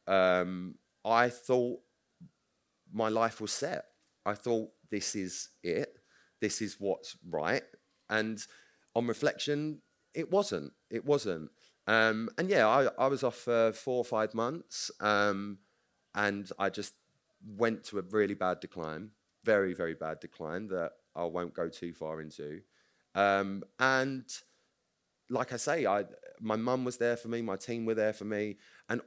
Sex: male